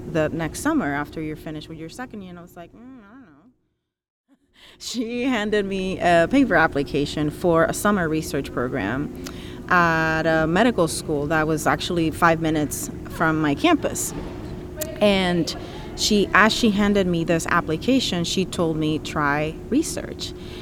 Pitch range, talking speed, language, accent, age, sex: 150-180 Hz, 155 wpm, English, American, 30-49, female